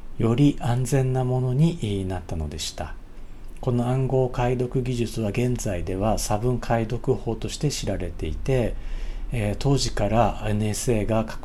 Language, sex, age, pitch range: Japanese, male, 50-69, 95-120 Hz